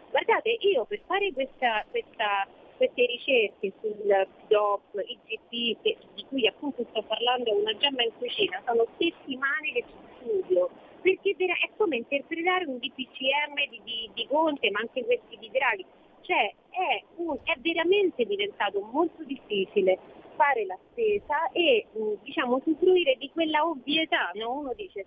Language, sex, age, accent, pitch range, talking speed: Italian, female, 40-59, native, 235-390 Hz, 145 wpm